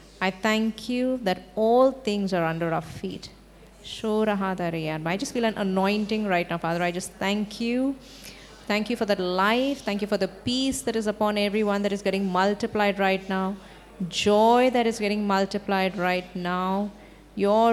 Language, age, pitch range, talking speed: English, 30-49, 195-230 Hz, 170 wpm